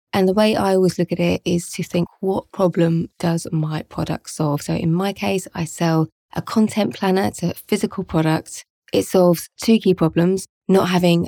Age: 20-39